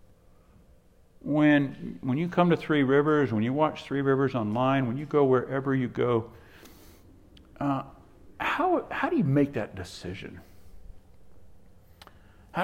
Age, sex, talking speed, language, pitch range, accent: 60-79, male, 135 wpm, English, 95-150 Hz, American